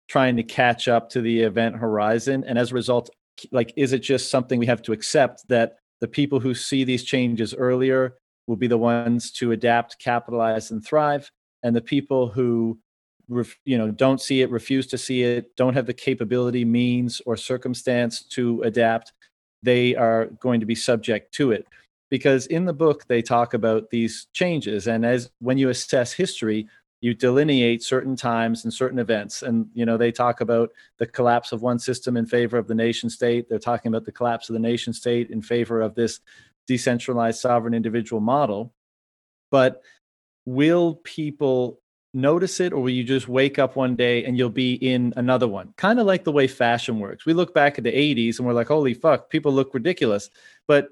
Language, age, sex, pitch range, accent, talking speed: English, 40-59, male, 115-135 Hz, American, 195 wpm